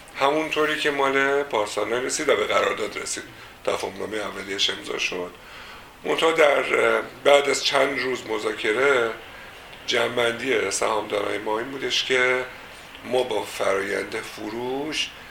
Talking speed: 115 wpm